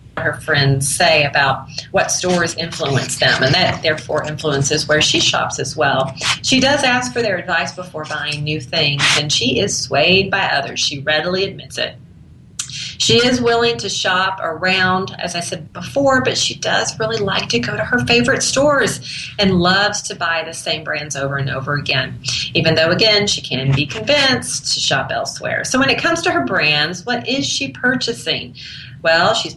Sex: female